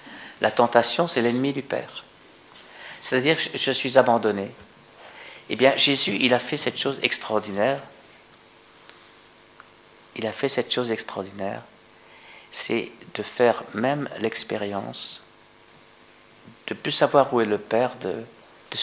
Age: 60-79